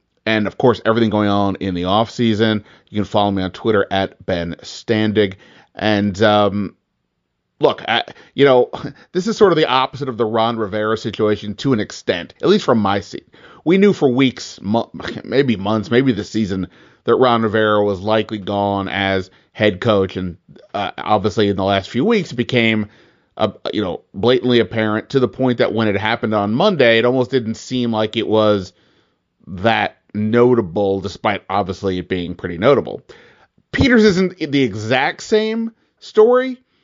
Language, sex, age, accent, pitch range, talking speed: English, male, 30-49, American, 105-130 Hz, 175 wpm